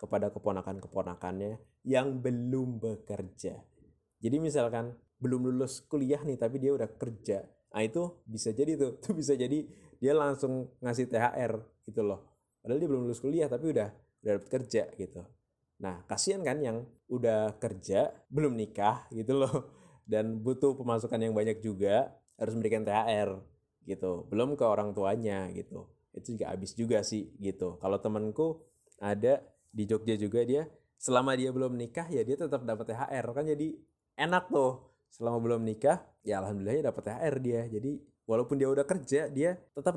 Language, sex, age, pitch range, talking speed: Indonesian, male, 20-39, 105-135 Hz, 160 wpm